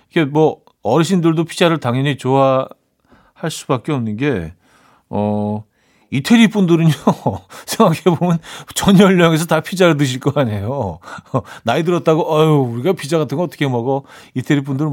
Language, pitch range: Korean, 115-160 Hz